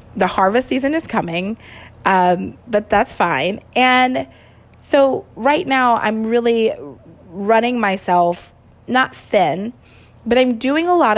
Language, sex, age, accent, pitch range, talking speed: English, female, 20-39, American, 185-240 Hz, 130 wpm